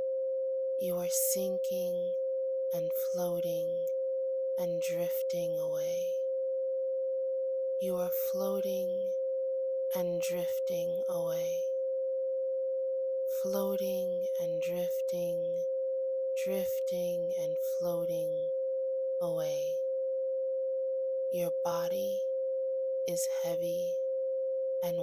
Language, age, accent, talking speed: English, 20-39, American, 60 wpm